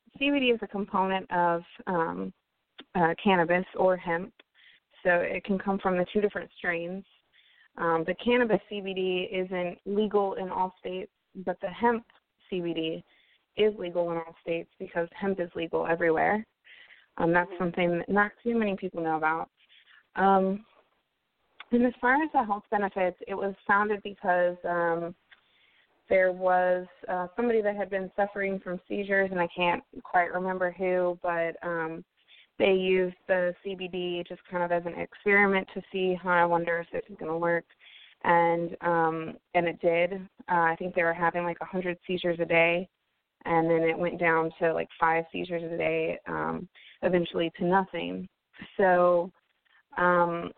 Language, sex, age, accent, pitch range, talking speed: English, female, 20-39, American, 170-195 Hz, 165 wpm